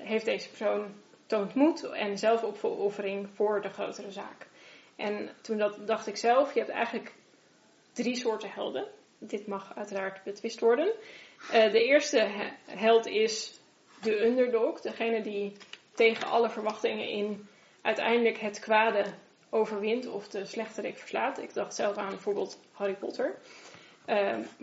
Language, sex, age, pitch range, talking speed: Dutch, female, 10-29, 205-230 Hz, 140 wpm